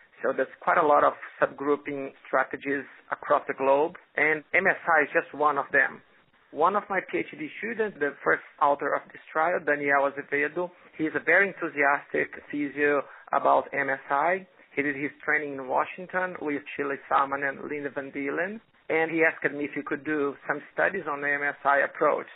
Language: English